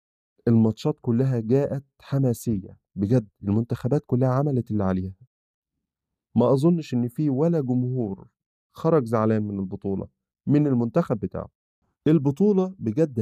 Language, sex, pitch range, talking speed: Arabic, male, 105-135 Hz, 115 wpm